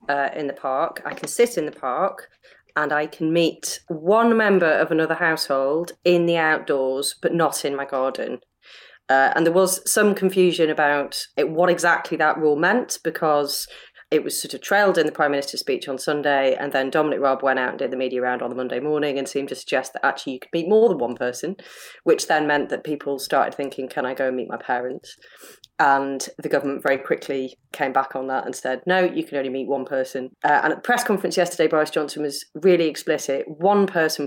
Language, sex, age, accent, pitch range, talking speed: English, female, 30-49, British, 140-170 Hz, 220 wpm